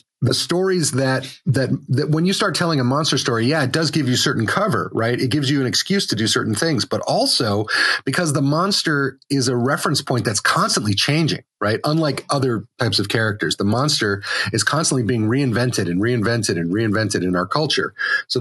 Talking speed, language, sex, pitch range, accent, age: 200 wpm, English, male, 110-140 Hz, American, 30-49